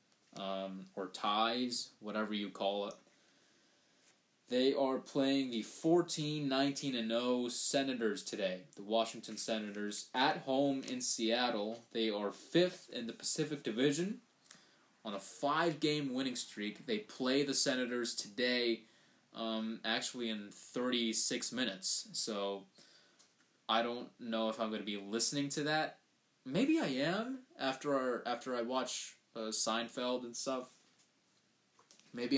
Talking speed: 130 wpm